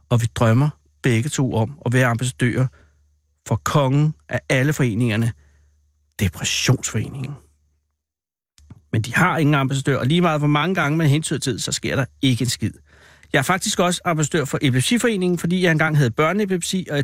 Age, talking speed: 60-79, 170 wpm